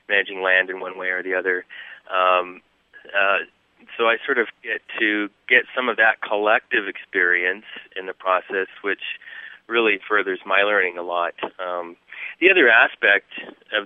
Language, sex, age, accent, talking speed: English, male, 30-49, American, 160 wpm